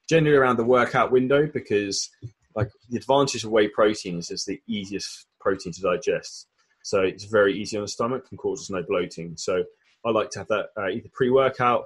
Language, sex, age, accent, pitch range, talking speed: English, male, 20-39, British, 100-140 Hz, 195 wpm